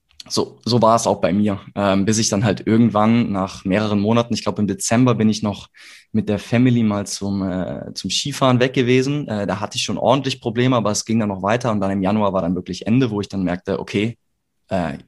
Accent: German